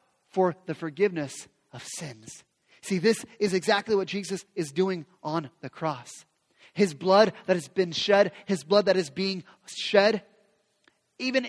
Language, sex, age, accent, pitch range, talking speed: English, male, 30-49, American, 155-210 Hz, 150 wpm